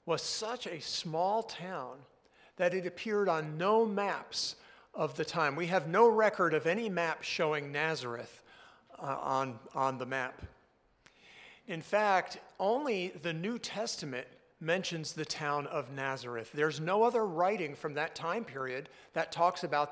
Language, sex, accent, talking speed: English, male, American, 150 wpm